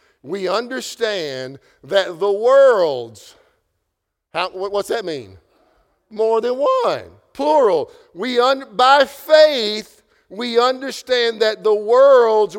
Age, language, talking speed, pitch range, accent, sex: 50-69, English, 90 wpm, 165-275 Hz, American, male